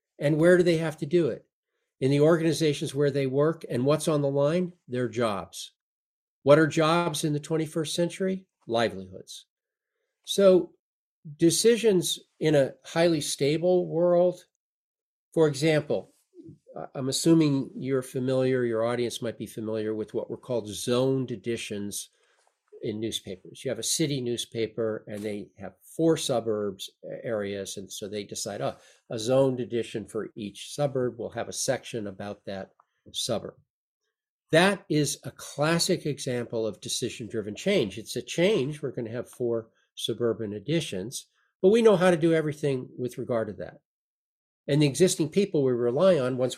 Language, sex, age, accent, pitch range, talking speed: English, male, 50-69, American, 120-170 Hz, 155 wpm